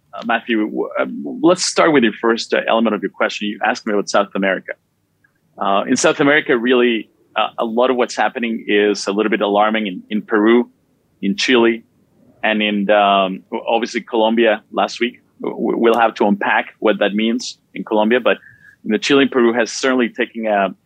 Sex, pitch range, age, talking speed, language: male, 105-125 Hz, 30-49, 185 wpm, English